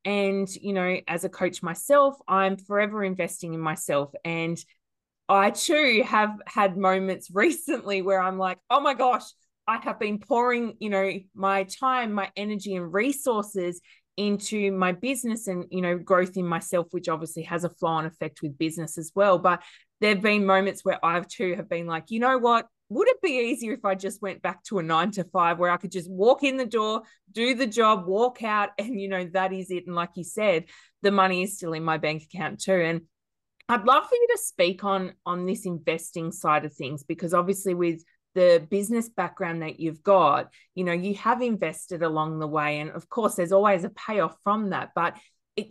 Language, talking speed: English, 205 wpm